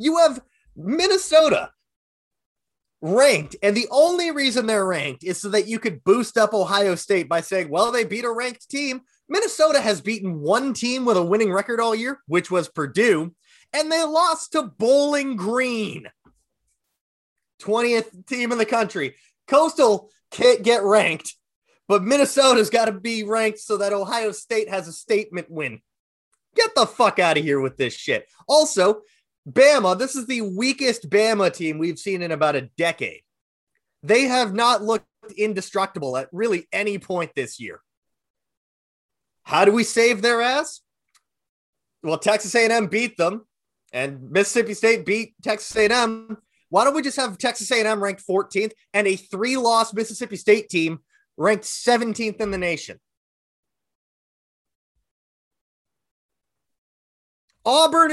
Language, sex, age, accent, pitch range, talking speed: English, male, 30-49, American, 190-255 Hz, 150 wpm